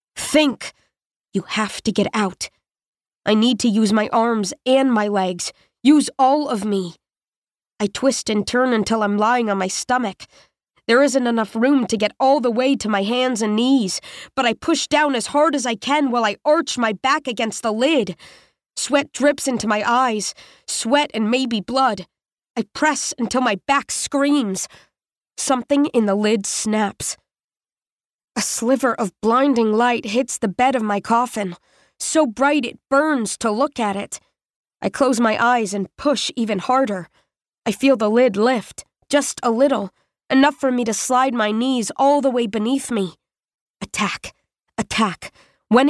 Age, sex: 20-39, female